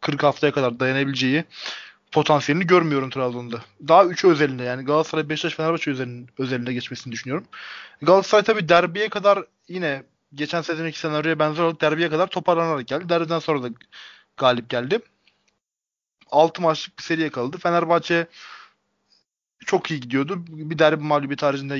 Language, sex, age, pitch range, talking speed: Turkish, male, 20-39, 140-170 Hz, 135 wpm